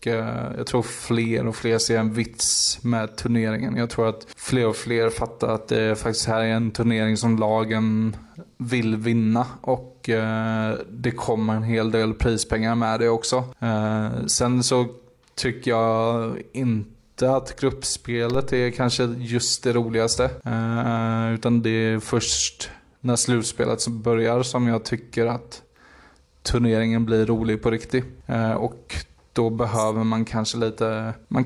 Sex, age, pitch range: male, 20-39, 115-125 Hz